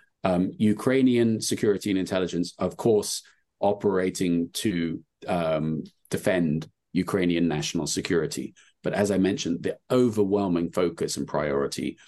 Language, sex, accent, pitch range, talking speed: English, male, British, 75-95 Hz, 115 wpm